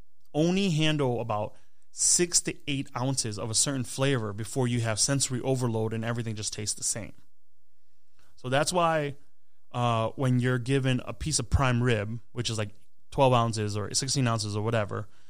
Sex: male